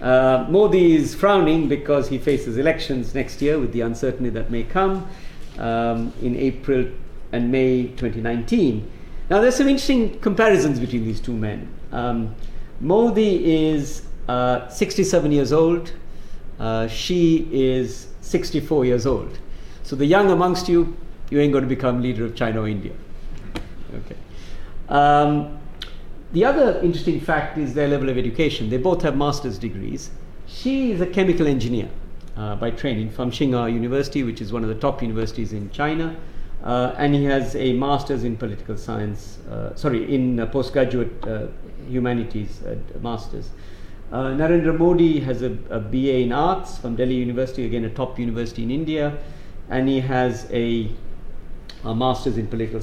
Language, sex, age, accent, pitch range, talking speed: English, male, 50-69, Indian, 115-150 Hz, 155 wpm